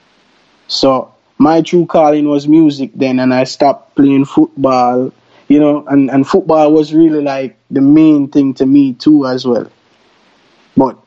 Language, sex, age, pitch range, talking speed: English, male, 20-39, 130-155 Hz, 155 wpm